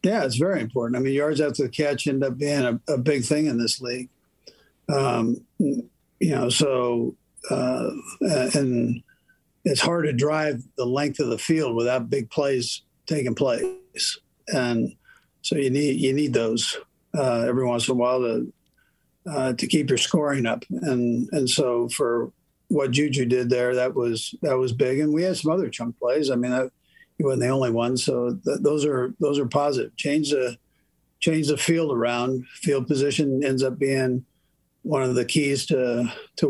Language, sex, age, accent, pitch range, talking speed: English, male, 50-69, American, 120-145 Hz, 180 wpm